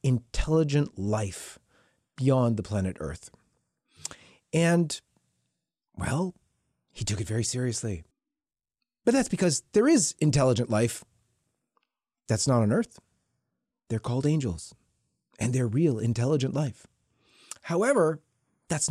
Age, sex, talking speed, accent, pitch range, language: 30-49, male, 110 wpm, American, 115-165 Hz, English